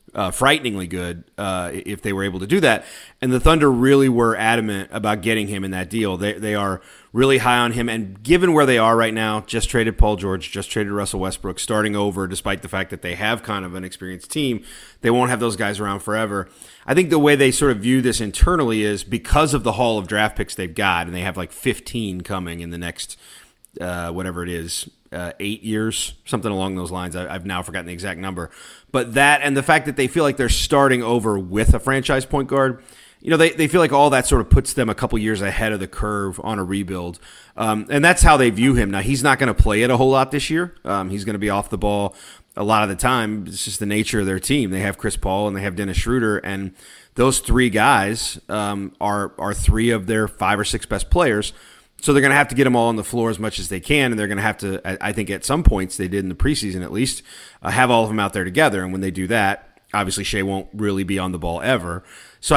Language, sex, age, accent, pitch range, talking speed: English, male, 30-49, American, 95-125 Hz, 260 wpm